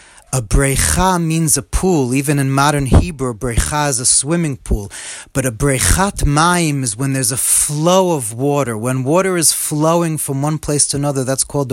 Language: English